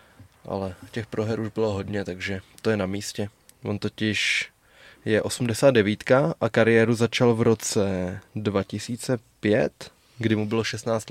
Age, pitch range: 20-39, 105-115 Hz